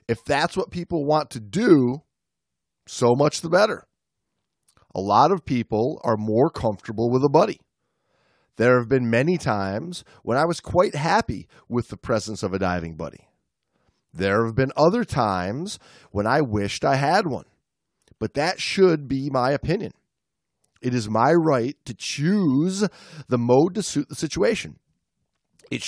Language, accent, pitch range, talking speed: English, American, 120-175 Hz, 160 wpm